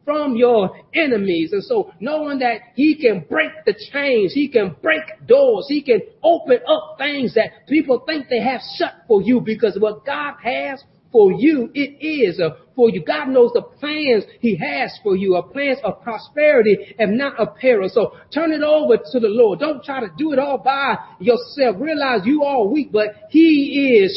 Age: 40-59